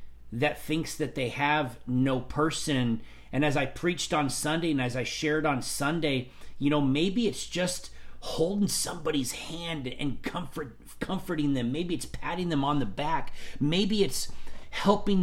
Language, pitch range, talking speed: English, 120-155 Hz, 160 wpm